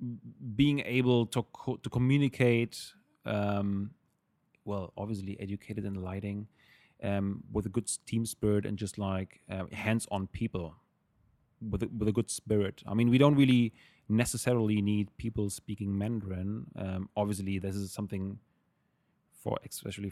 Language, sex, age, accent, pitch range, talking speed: English, male, 30-49, German, 100-115 Hz, 140 wpm